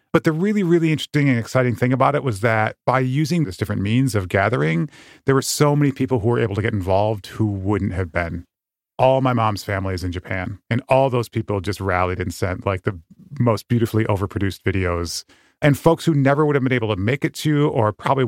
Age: 30-49